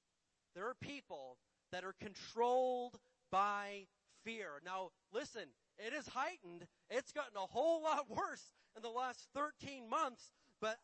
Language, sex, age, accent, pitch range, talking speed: English, male, 40-59, American, 190-250 Hz, 140 wpm